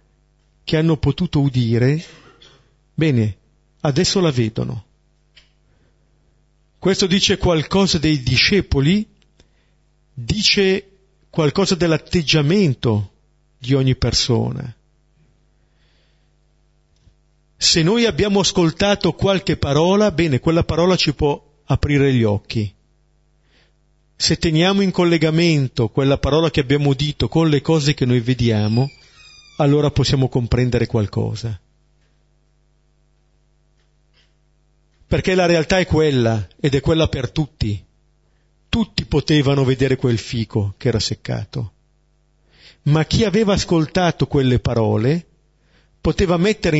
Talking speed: 100 wpm